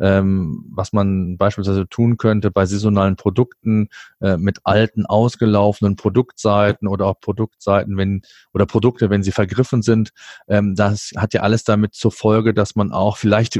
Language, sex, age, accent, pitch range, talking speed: German, male, 40-59, German, 105-120 Hz, 160 wpm